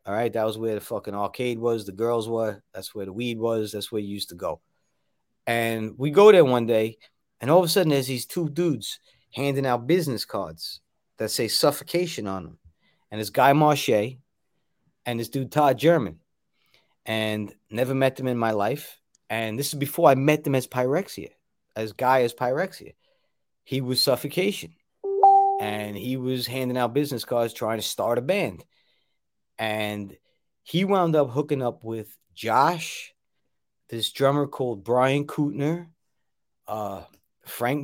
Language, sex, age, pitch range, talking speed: English, male, 30-49, 105-135 Hz, 170 wpm